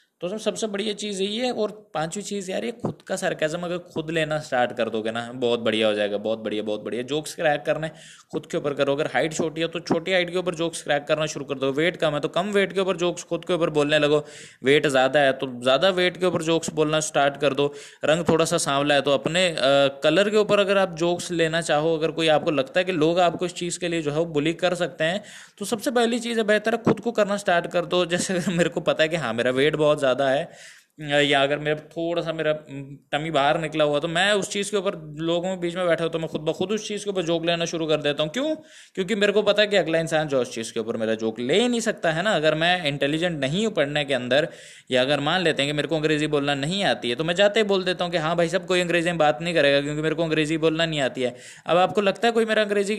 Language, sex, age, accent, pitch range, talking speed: Hindi, male, 20-39, native, 150-195 Hz, 215 wpm